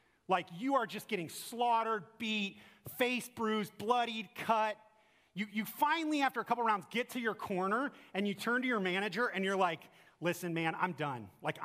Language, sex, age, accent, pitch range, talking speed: English, male, 30-49, American, 140-205 Hz, 185 wpm